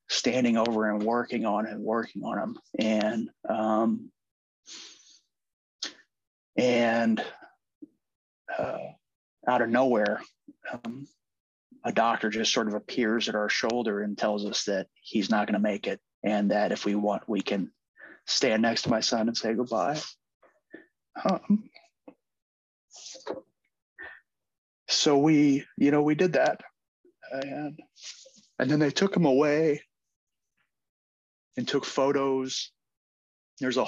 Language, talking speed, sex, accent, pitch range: English, 125 wpm, male, American, 110-140 Hz